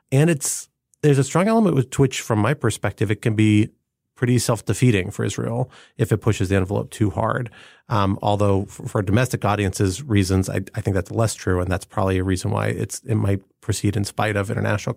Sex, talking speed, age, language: male, 215 wpm, 30-49, English